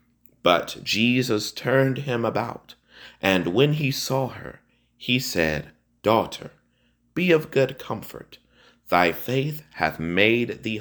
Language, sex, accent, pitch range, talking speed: English, male, American, 90-125 Hz, 120 wpm